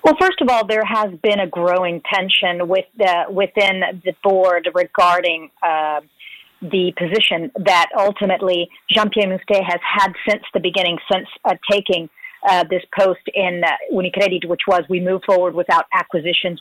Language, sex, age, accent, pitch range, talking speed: English, female, 40-59, American, 175-205 Hz, 160 wpm